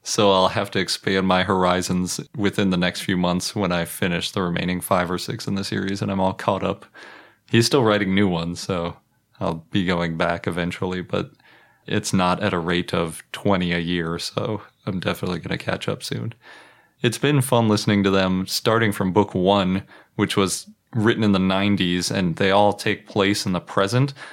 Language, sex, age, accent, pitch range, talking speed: English, male, 20-39, American, 90-105 Hz, 200 wpm